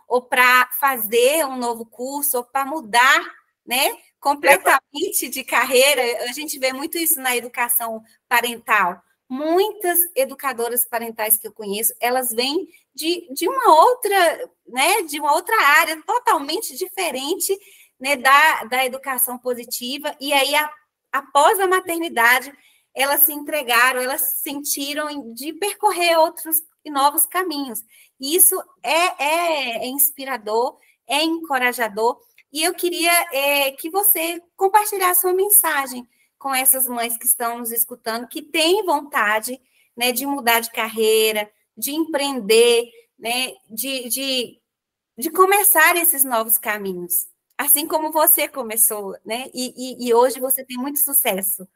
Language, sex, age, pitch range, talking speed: Portuguese, female, 20-39, 245-325 Hz, 135 wpm